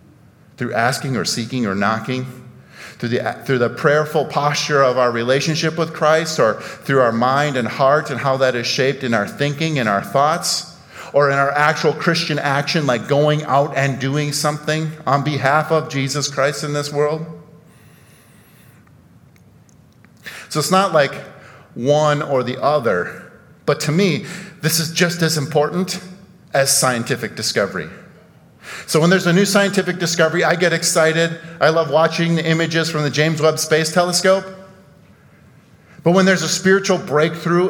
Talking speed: 160 wpm